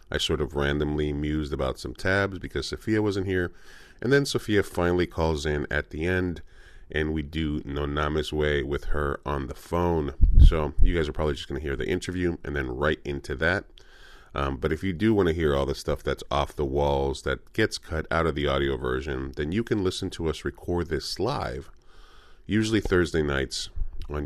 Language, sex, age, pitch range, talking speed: English, male, 30-49, 70-85 Hz, 210 wpm